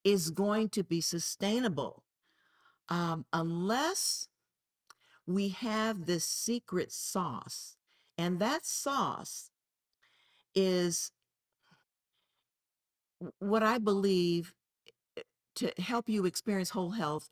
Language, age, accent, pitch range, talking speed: English, 50-69, American, 165-210 Hz, 85 wpm